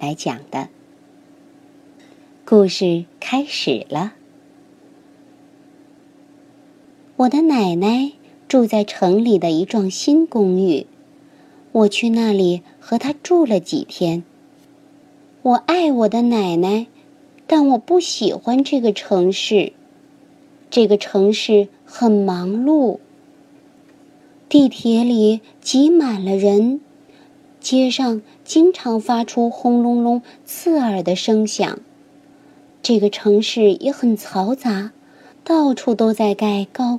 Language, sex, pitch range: Chinese, male, 215-295 Hz